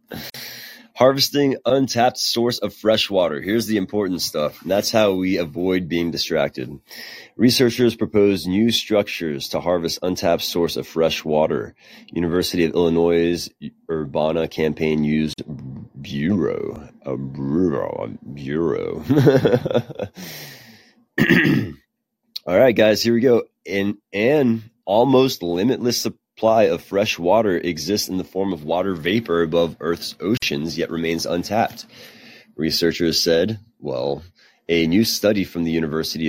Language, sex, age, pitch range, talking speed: English, male, 30-49, 75-105 Hz, 120 wpm